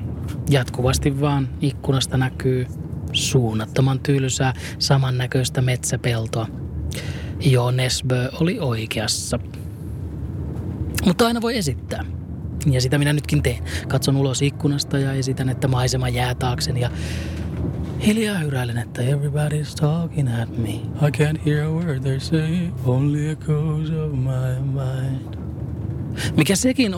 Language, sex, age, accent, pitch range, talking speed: Finnish, male, 20-39, native, 115-145 Hz, 90 wpm